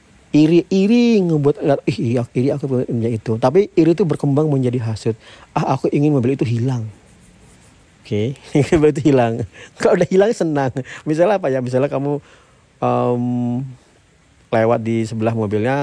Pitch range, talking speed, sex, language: 110-135 Hz, 145 wpm, male, Indonesian